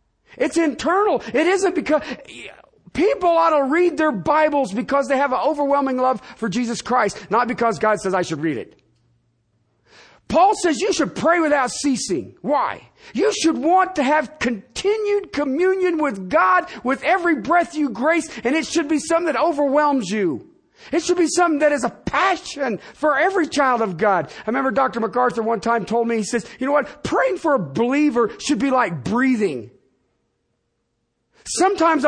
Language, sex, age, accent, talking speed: English, male, 50-69, American, 175 wpm